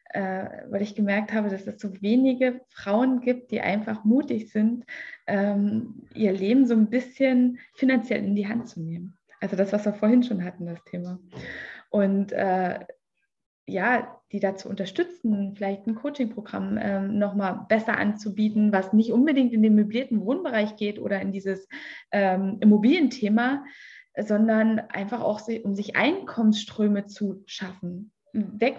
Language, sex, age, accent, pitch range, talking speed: German, female, 20-39, German, 200-240 Hz, 140 wpm